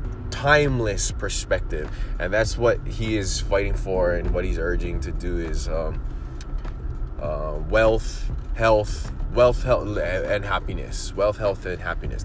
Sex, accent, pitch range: male, American, 85-110 Hz